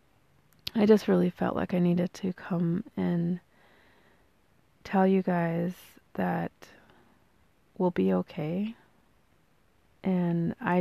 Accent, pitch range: American, 165-185 Hz